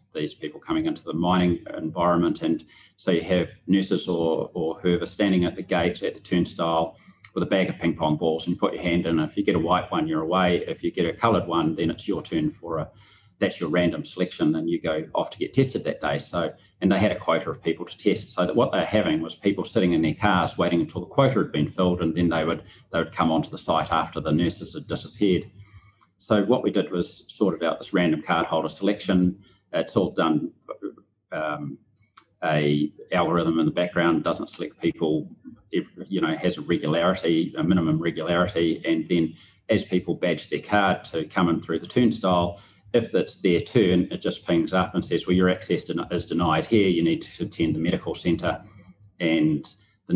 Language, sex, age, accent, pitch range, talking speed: English, male, 30-49, Australian, 80-95 Hz, 220 wpm